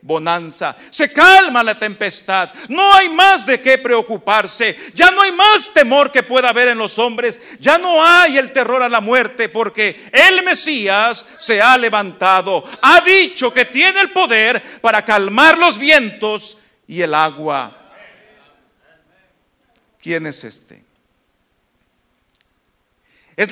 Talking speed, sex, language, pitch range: 135 wpm, male, English, 215-305 Hz